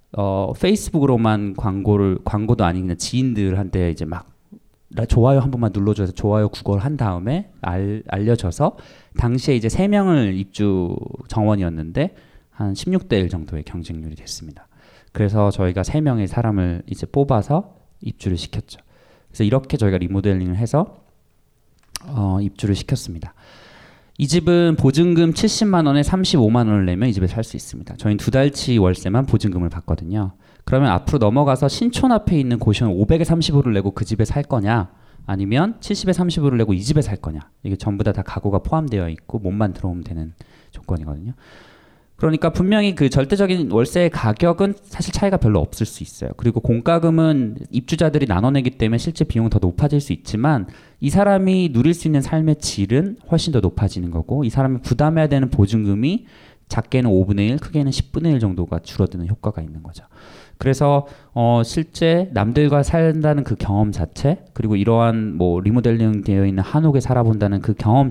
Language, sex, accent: Korean, male, native